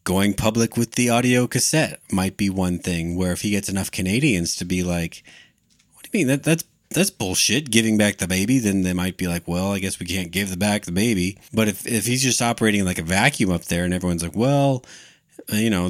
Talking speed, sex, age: 240 wpm, male, 30-49